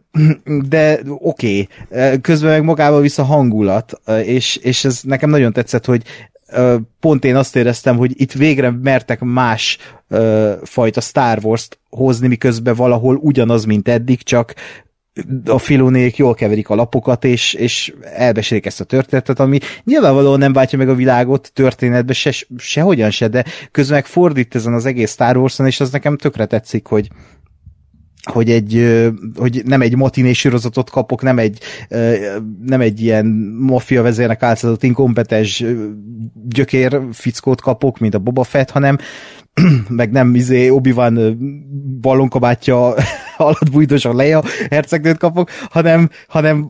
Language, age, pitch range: Hungarian, 30-49, 115-140 Hz